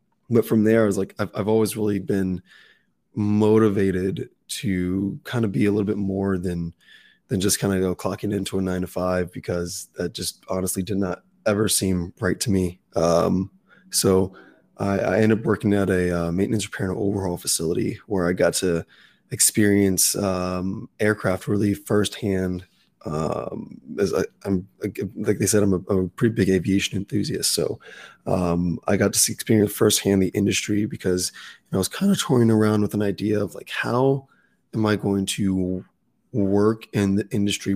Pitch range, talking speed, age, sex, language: 95-105 Hz, 185 wpm, 20-39, male, English